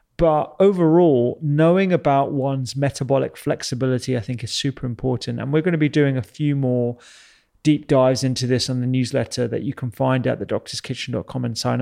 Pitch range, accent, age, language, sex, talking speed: 130-155 Hz, British, 30-49, English, male, 185 wpm